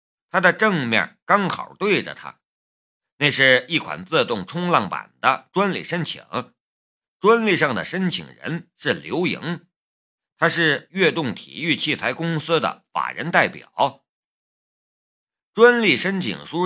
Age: 50-69